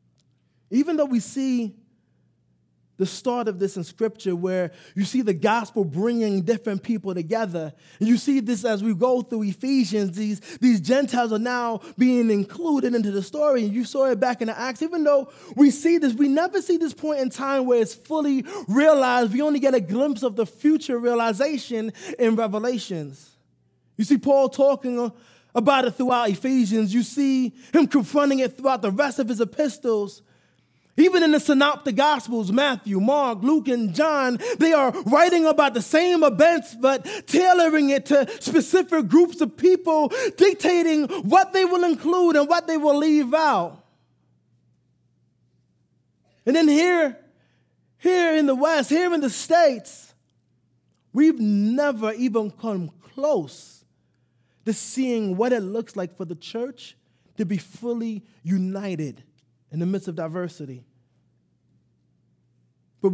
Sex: male